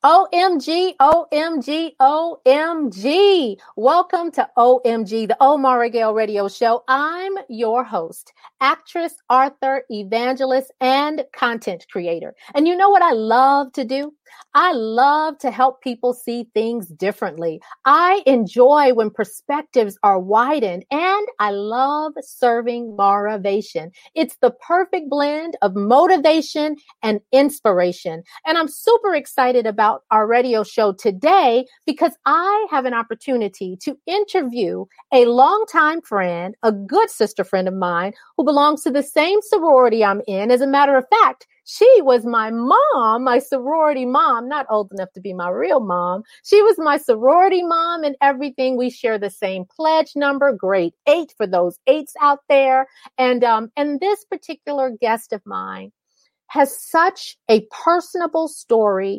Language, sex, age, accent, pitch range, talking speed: English, female, 40-59, American, 220-305 Hz, 145 wpm